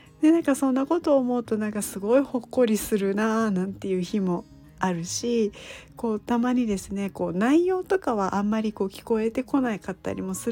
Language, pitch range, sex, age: Japanese, 200-260 Hz, female, 40-59